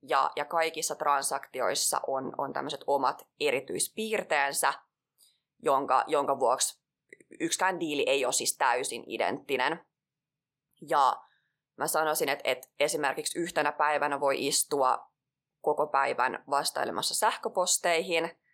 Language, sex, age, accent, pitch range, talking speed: Finnish, female, 20-39, native, 140-180 Hz, 95 wpm